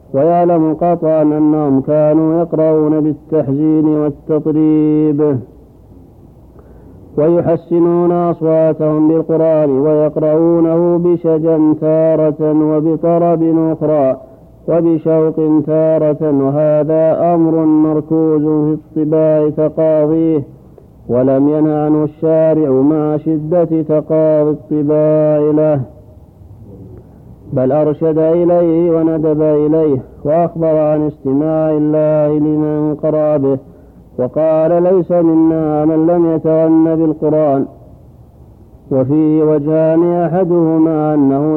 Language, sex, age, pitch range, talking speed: Arabic, male, 50-69, 150-160 Hz, 80 wpm